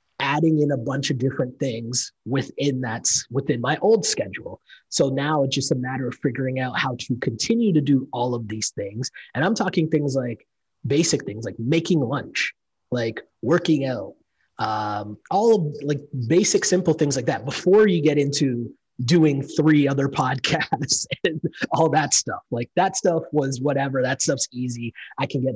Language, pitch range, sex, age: English, 125-155 Hz, male, 20-39